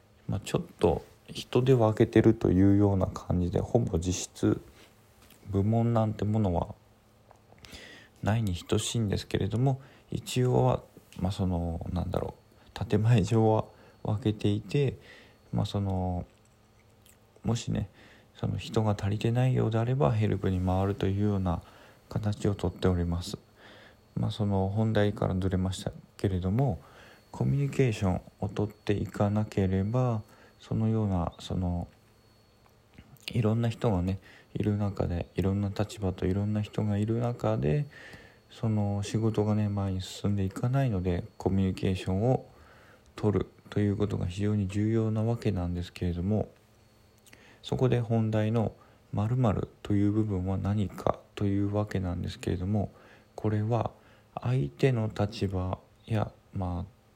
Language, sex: Japanese, male